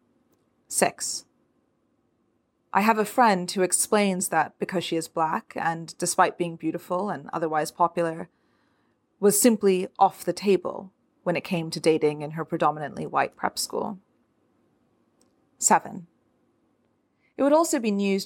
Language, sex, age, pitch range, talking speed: English, female, 30-49, 170-205 Hz, 135 wpm